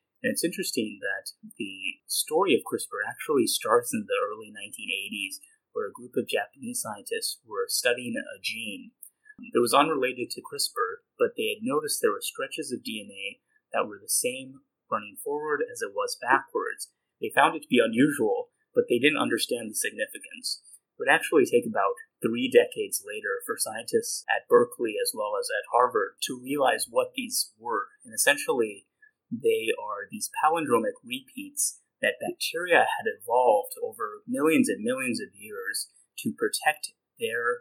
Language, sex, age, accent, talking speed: English, male, 30-49, American, 165 wpm